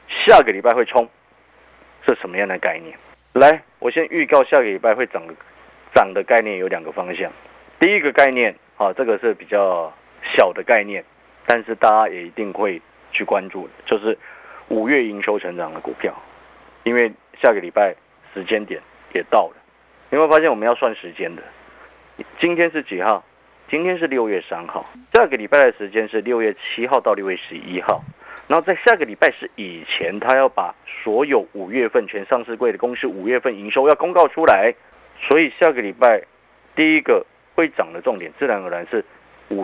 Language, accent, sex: Chinese, native, male